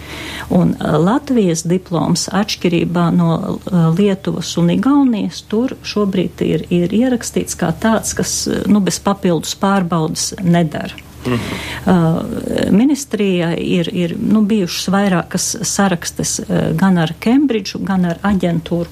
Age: 50-69